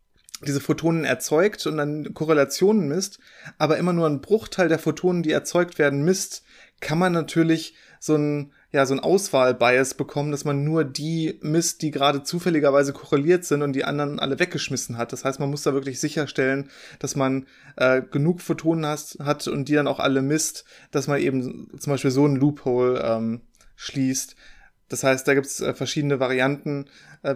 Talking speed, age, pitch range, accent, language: 180 wpm, 20-39, 135-155 Hz, German, German